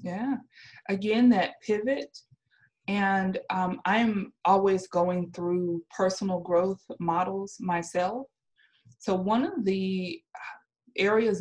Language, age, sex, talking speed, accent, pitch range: English, 30-49, female, 100 wpm, American, 170-205 Hz